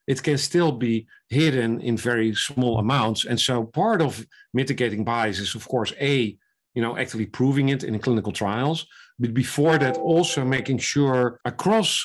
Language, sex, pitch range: English, male, 115-135 Hz